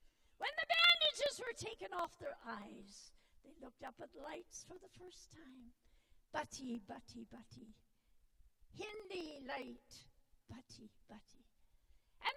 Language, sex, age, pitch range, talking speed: English, female, 60-79, 240-345 Hz, 120 wpm